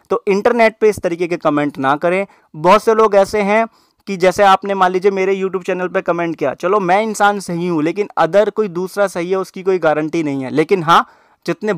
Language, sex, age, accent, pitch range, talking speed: Hindi, male, 20-39, native, 165-195 Hz, 225 wpm